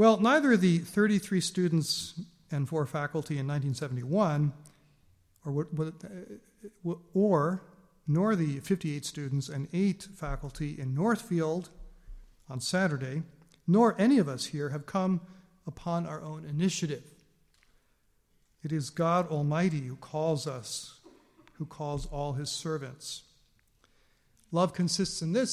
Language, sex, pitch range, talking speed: English, male, 145-180 Hz, 120 wpm